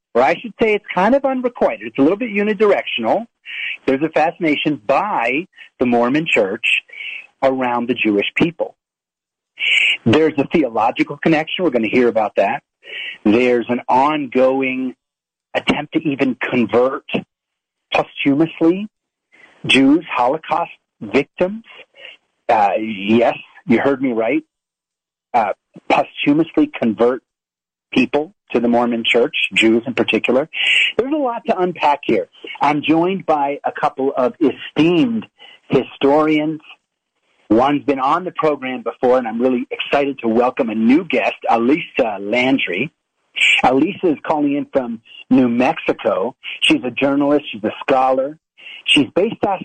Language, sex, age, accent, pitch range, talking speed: English, male, 40-59, American, 120-175 Hz, 130 wpm